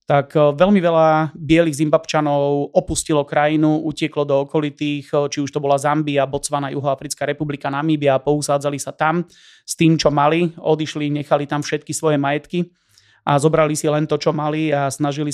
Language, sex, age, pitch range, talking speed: Slovak, male, 30-49, 145-160 Hz, 165 wpm